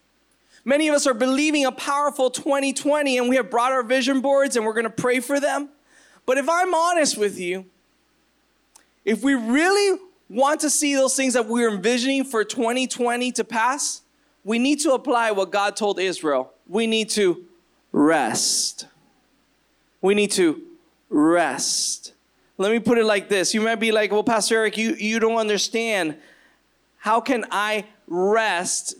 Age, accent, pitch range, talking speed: 20-39, American, 190-250 Hz, 165 wpm